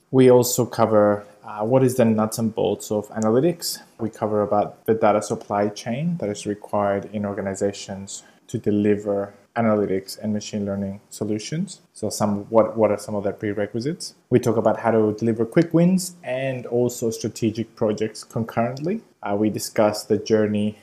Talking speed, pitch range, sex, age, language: 165 wpm, 105-115 Hz, male, 20-39, English